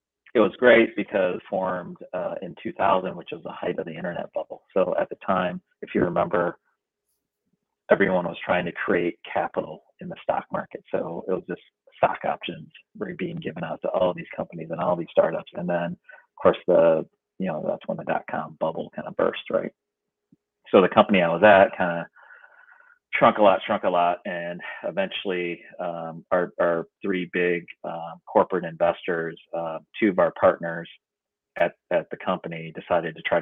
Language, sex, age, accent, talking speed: English, male, 30-49, American, 185 wpm